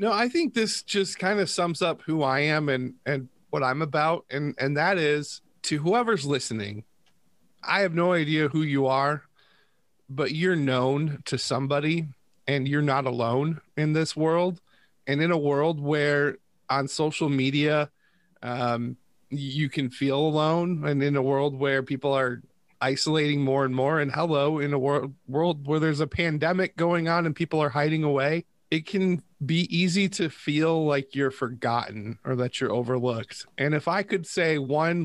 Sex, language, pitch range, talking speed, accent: male, English, 130-165 Hz, 175 wpm, American